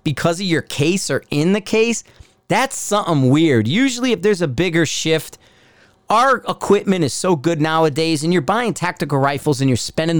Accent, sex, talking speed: American, male, 180 wpm